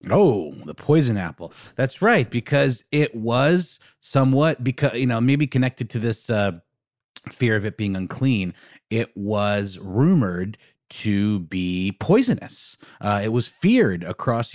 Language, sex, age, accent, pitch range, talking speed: English, male, 30-49, American, 105-130 Hz, 140 wpm